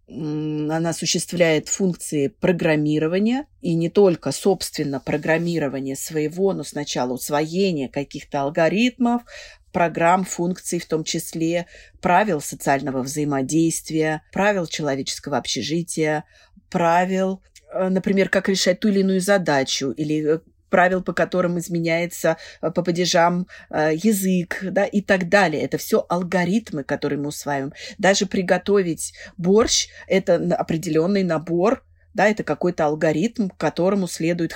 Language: Russian